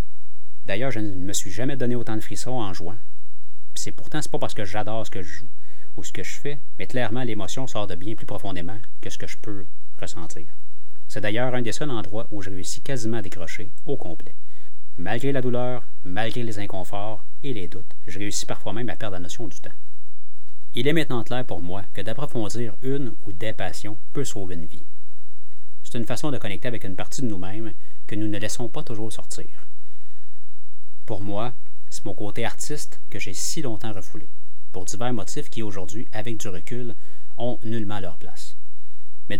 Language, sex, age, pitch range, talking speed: French, male, 30-49, 95-125 Hz, 205 wpm